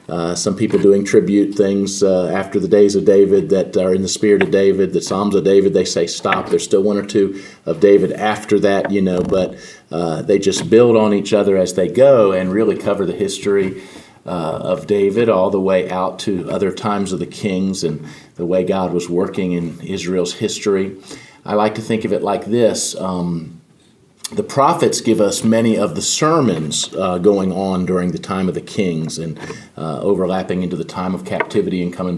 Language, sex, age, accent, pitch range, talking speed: English, male, 40-59, American, 90-100 Hz, 205 wpm